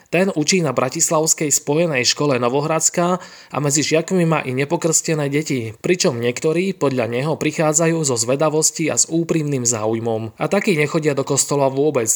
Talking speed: 155 wpm